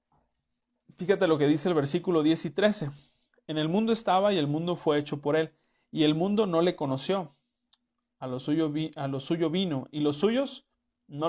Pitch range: 135-175 Hz